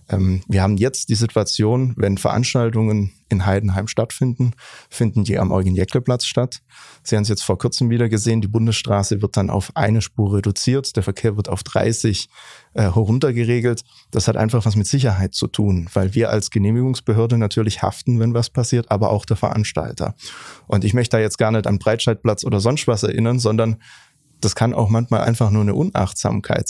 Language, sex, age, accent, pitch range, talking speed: German, male, 30-49, German, 105-120 Hz, 185 wpm